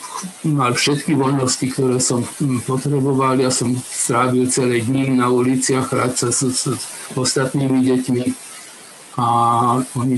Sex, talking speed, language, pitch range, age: male, 120 wpm, Slovak, 125-145 Hz, 60-79